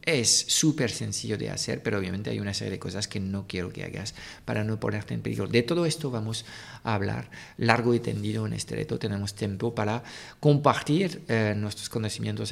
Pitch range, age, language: 100-125 Hz, 50-69, Spanish